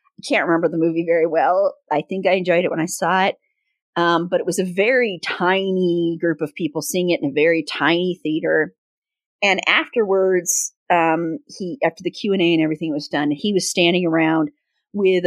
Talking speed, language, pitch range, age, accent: 195 wpm, English, 165-205 Hz, 40-59, American